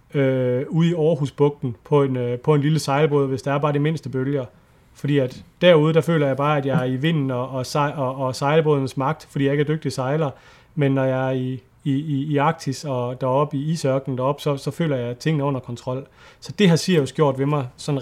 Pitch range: 135-155 Hz